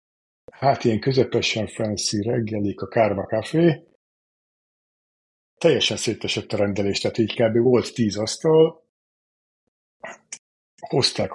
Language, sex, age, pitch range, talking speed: Hungarian, male, 50-69, 105-125 Hz, 100 wpm